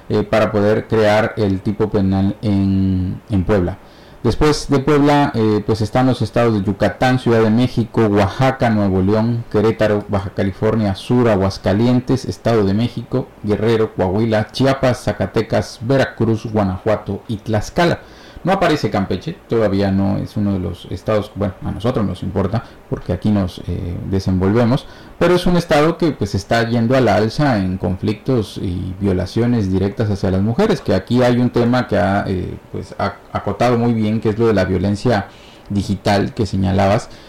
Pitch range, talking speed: 100-125 Hz, 165 wpm